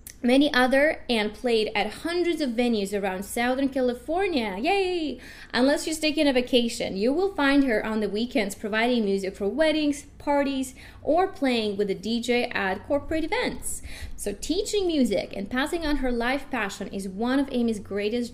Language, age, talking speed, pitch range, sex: English, 20-39, 165 wpm, 210-275 Hz, female